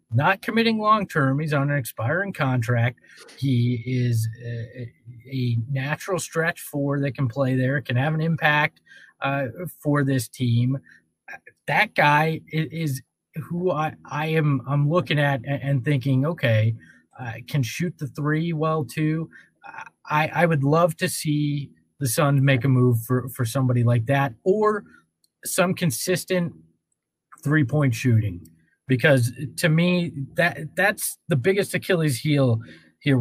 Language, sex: English, male